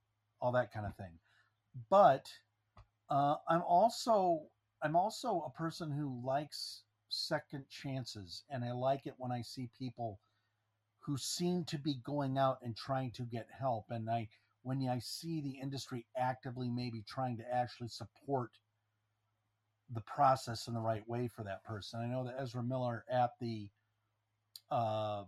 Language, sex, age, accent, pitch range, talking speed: English, male, 50-69, American, 110-130 Hz, 155 wpm